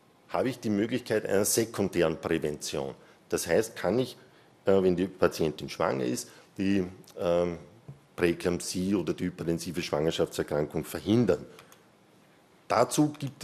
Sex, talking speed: male, 110 wpm